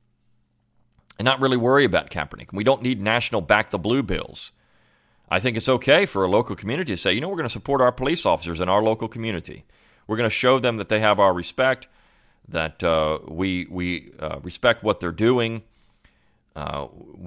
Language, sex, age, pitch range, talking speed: English, male, 40-59, 95-115 Hz, 200 wpm